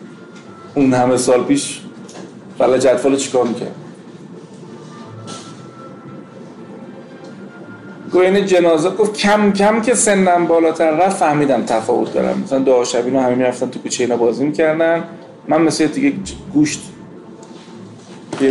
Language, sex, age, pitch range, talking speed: Persian, male, 40-59, 140-195 Hz, 115 wpm